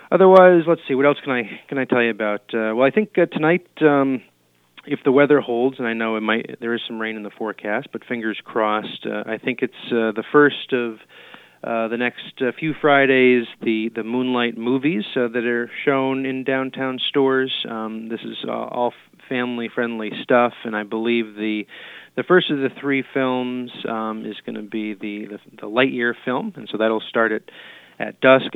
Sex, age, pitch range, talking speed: male, 30-49, 110-130 Hz, 205 wpm